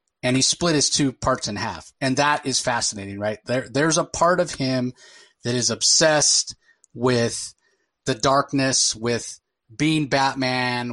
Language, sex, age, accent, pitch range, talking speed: English, male, 30-49, American, 120-140 Hz, 155 wpm